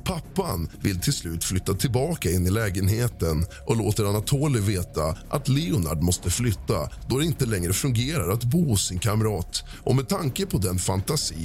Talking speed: 175 wpm